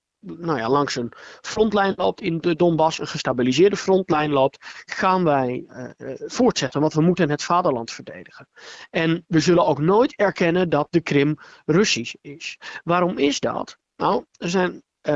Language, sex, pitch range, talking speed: Dutch, male, 150-205 Hz, 160 wpm